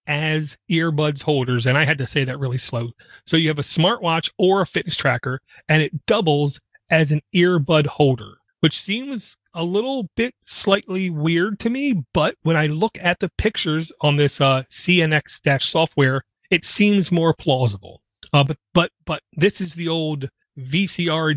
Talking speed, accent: 175 wpm, American